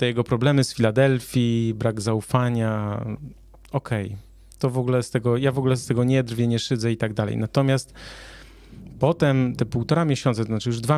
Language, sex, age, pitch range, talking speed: Polish, male, 30-49, 110-145 Hz, 190 wpm